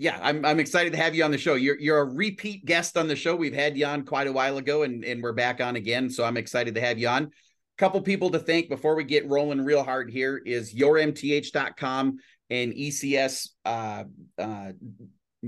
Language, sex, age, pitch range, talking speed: English, male, 30-49, 120-145 Hz, 220 wpm